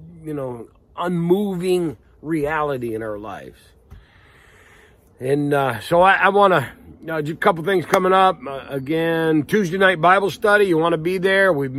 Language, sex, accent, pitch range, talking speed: English, male, American, 110-150 Hz, 170 wpm